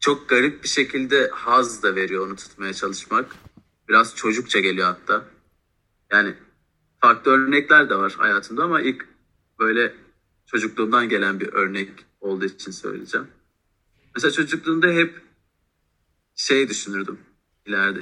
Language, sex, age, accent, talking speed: Turkish, male, 40-59, native, 120 wpm